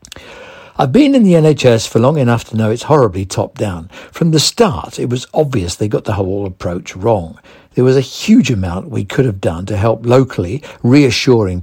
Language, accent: English, British